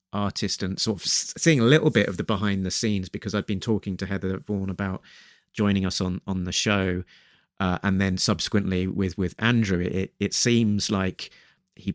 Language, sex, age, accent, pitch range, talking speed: English, male, 30-49, British, 90-105 Hz, 195 wpm